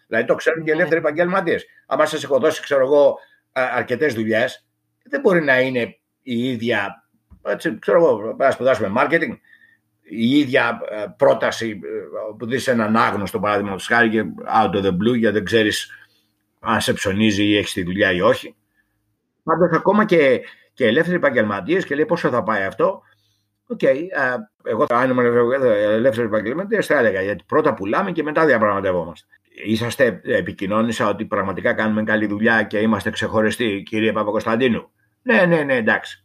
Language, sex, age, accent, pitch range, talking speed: Greek, male, 60-79, Spanish, 110-175 Hz, 155 wpm